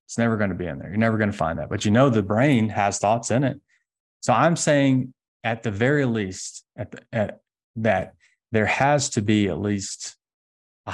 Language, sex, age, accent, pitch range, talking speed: English, male, 30-49, American, 95-120 Hz, 205 wpm